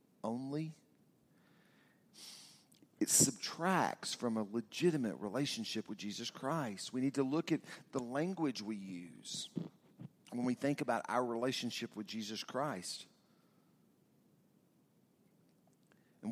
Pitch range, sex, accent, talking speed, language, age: 115-145 Hz, male, American, 105 wpm, English, 50-69